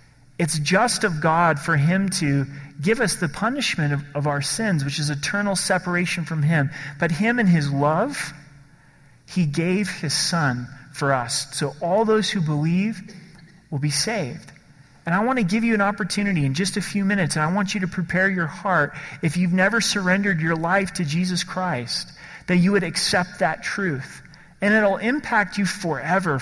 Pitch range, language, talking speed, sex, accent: 150-195 Hz, English, 185 wpm, male, American